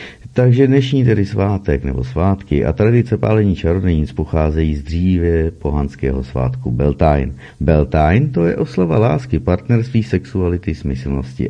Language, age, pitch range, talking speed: Czech, 50-69, 70-110 Hz, 120 wpm